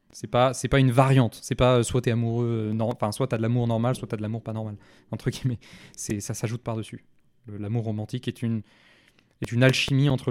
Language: French